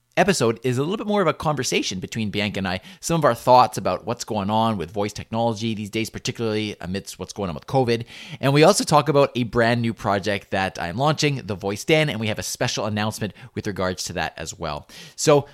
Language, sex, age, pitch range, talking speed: English, male, 30-49, 100-135 Hz, 235 wpm